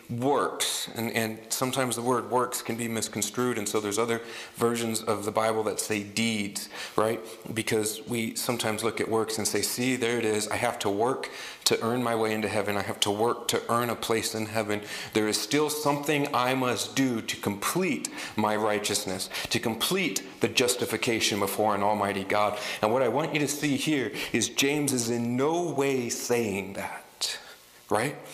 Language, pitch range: English, 110-130 Hz